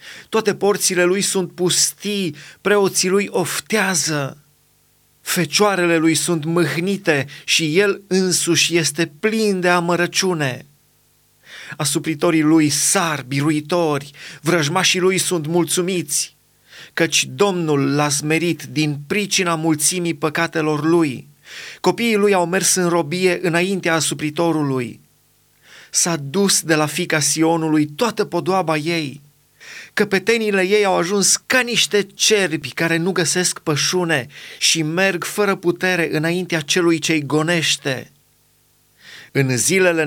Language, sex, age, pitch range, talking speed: Romanian, male, 30-49, 150-180 Hz, 110 wpm